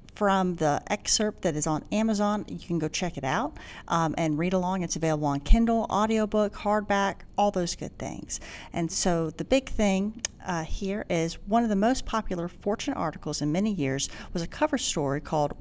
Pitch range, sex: 145-210 Hz, female